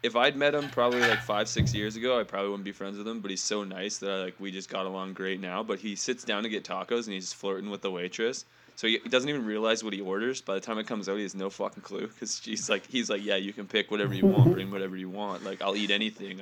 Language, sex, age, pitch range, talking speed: English, male, 20-39, 100-130 Hz, 305 wpm